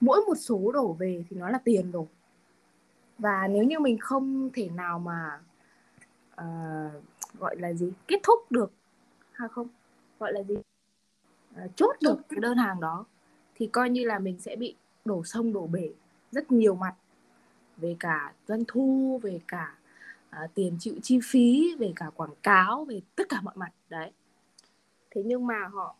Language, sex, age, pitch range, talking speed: Vietnamese, female, 20-39, 170-245 Hz, 175 wpm